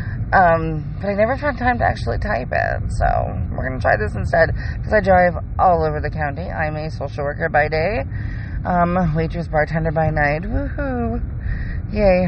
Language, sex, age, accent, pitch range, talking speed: English, female, 20-39, American, 115-145 Hz, 175 wpm